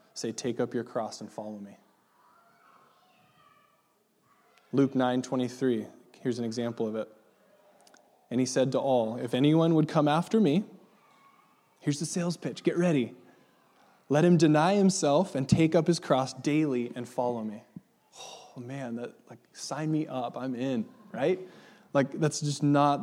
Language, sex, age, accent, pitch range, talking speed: English, male, 20-39, American, 125-155 Hz, 155 wpm